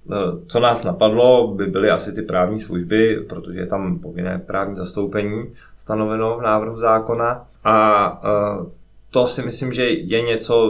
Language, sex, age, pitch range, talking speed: Czech, male, 20-39, 90-105 Hz, 145 wpm